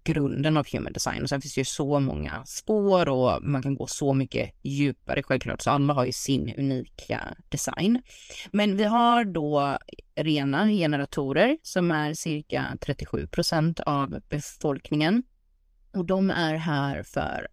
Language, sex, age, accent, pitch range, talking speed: Swedish, female, 30-49, native, 135-165 Hz, 150 wpm